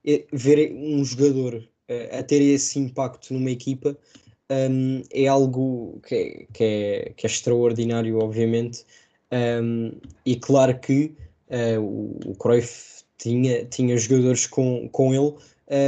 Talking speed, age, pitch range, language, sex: 130 wpm, 20-39, 125-140 Hz, Portuguese, male